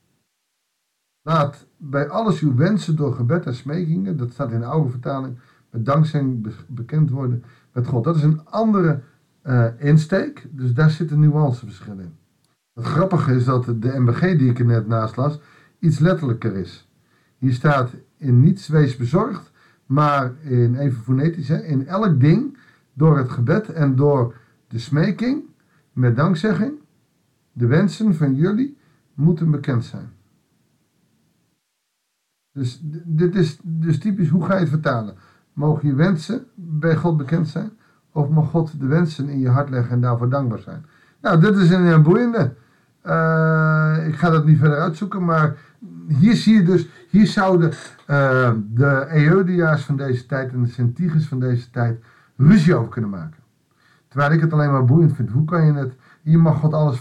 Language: Dutch